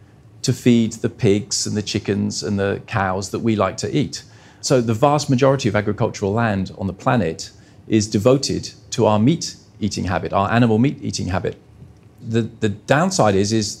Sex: male